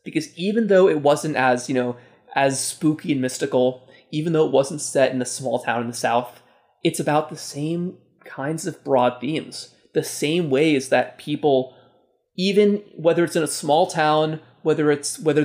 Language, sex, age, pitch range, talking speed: English, male, 20-39, 130-160 Hz, 185 wpm